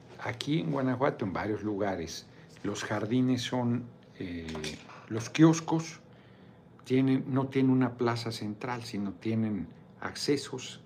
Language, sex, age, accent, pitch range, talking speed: Spanish, male, 60-79, Mexican, 105-135 Hz, 115 wpm